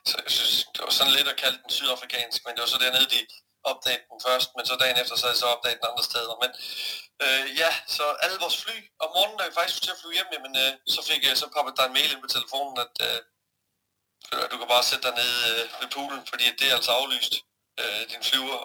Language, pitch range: Danish, 120-135 Hz